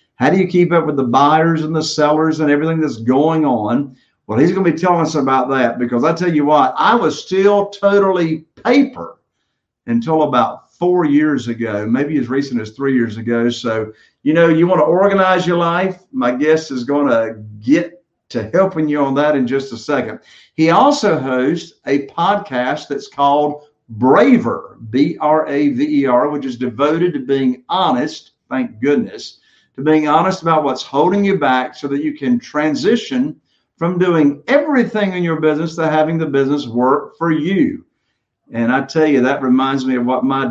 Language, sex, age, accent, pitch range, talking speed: English, male, 50-69, American, 130-175 Hz, 185 wpm